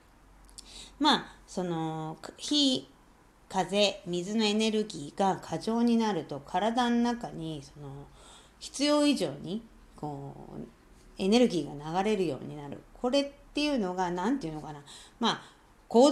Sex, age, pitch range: female, 40-59, 160-245 Hz